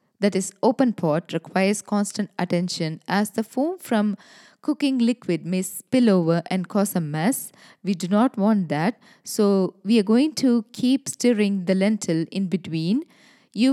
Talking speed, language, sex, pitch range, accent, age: 160 wpm, English, female, 170-220 Hz, Indian, 20-39